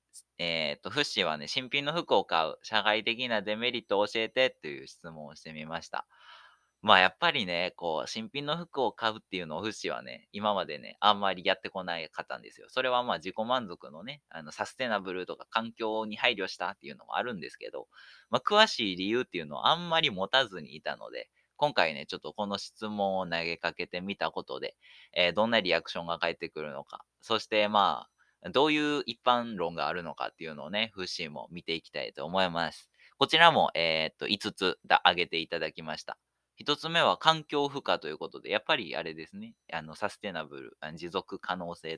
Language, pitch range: Japanese, 90-145 Hz